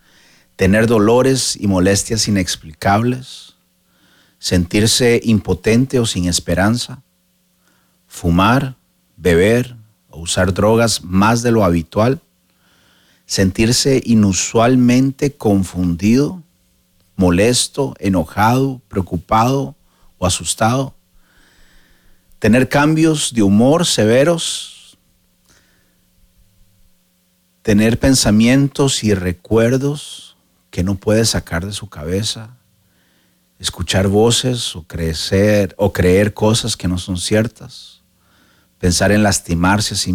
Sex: male